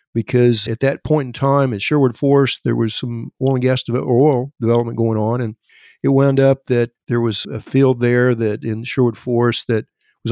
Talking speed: 210 wpm